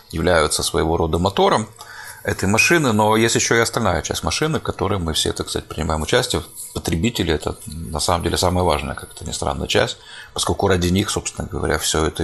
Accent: native